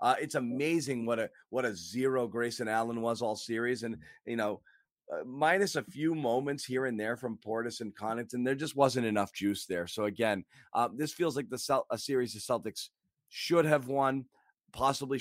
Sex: male